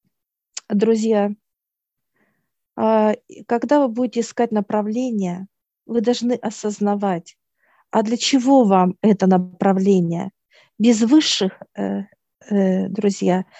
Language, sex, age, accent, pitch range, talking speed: Russian, female, 50-69, native, 195-230 Hz, 80 wpm